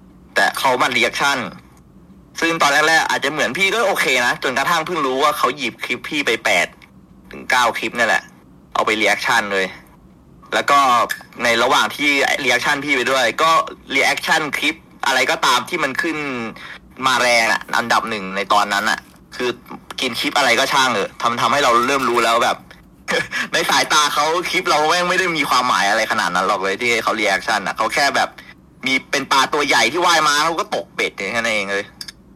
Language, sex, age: Thai, male, 20-39